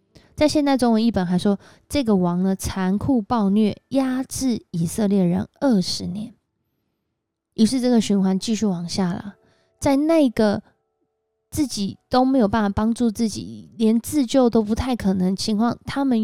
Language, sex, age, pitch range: Chinese, female, 20-39, 185-240 Hz